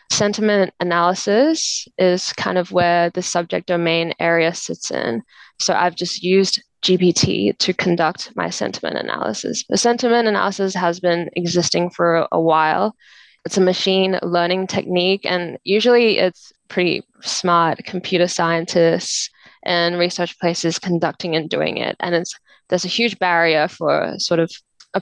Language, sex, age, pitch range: English, female, 10-29, 170-190 Hz